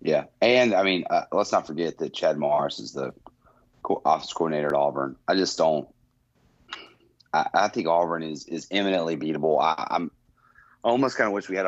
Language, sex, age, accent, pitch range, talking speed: English, male, 30-49, American, 80-90 Hz, 190 wpm